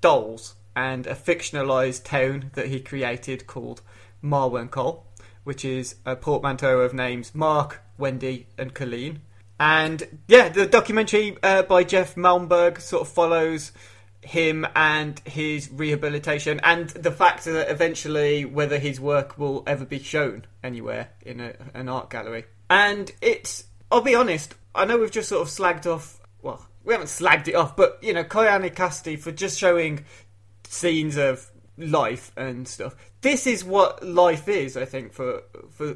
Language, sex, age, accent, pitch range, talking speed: English, male, 30-49, British, 130-170 Hz, 155 wpm